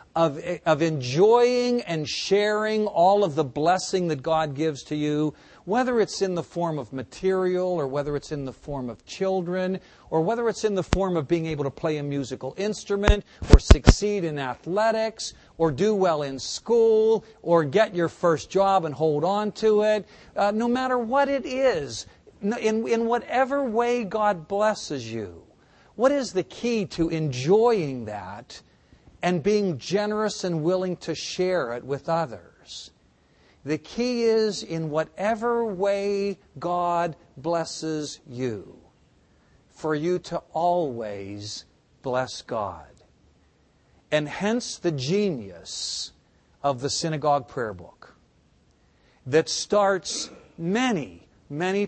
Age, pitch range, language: 50-69, 140-205 Hz, English